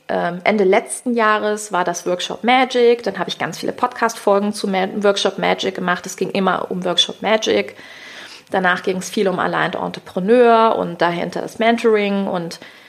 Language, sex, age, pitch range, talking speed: German, female, 30-49, 185-225 Hz, 165 wpm